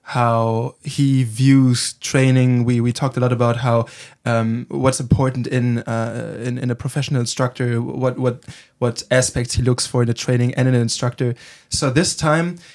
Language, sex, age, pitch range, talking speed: German, male, 20-39, 120-140 Hz, 180 wpm